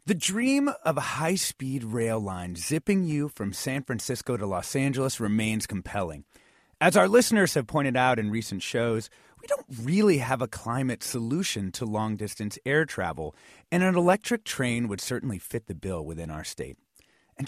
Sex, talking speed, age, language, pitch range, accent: male, 170 wpm, 30-49, English, 110-165 Hz, American